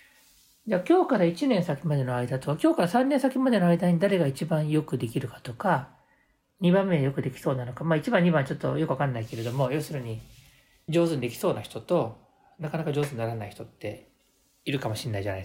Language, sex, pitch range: Japanese, male, 125-180 Hz